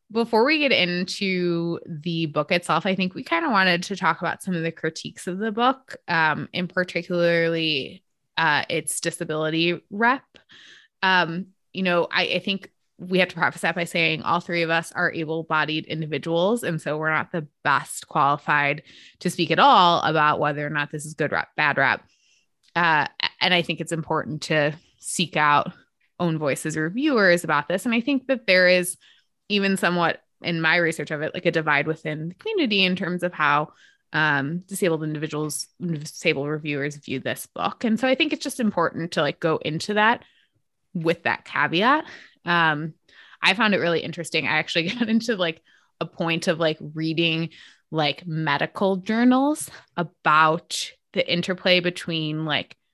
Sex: female